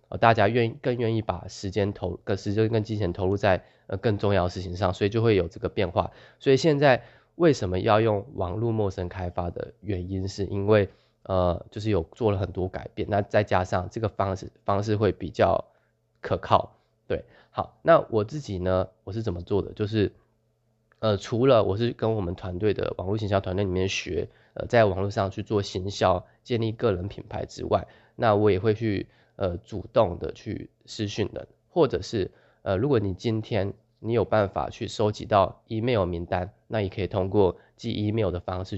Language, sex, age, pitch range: Chinese, male, 20-39, 95-115 Hz